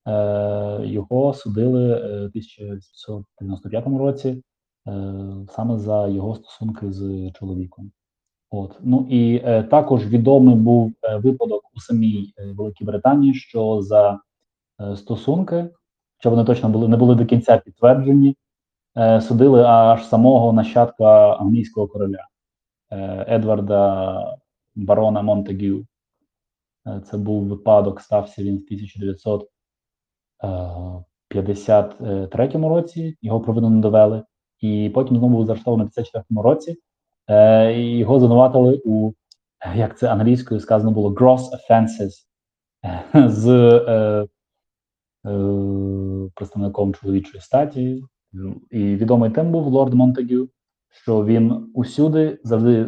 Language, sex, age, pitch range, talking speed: Ukrainian, male, 20-39, 100-125 Hz, 105 wpm